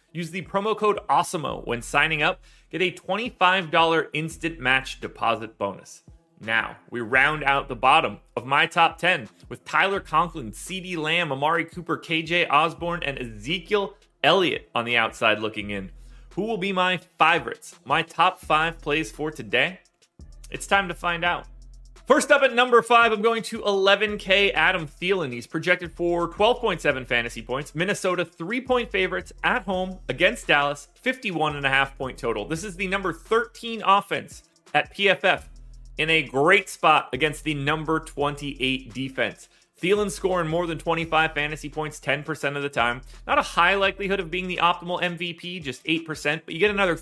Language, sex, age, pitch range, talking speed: English, male, 30-49, 145-195 Hz, 170 wpm